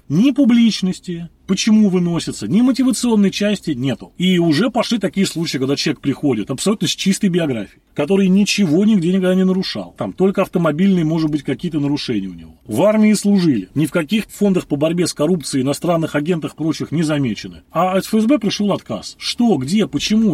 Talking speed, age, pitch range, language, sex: 175 wpm, 30-49, 150-210 Hz, Russian, male